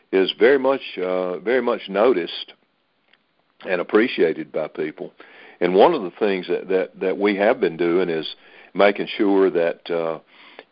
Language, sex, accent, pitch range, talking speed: English, male, American, 80-105 Hz, 155 wpm